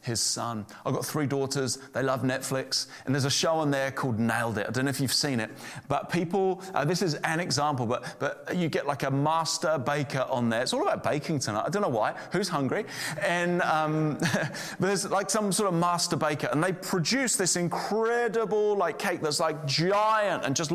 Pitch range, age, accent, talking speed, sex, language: 135-185 Hz, 30-49, British, 215 wpm, male, English